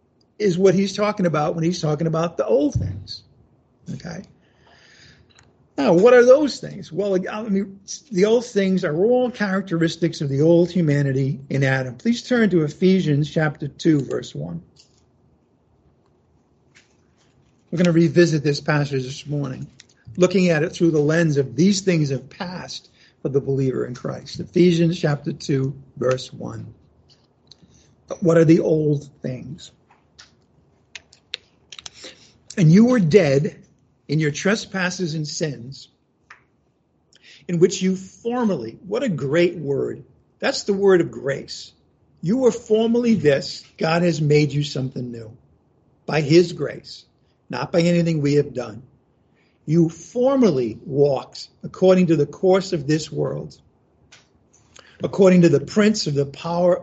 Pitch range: 140-185 Hz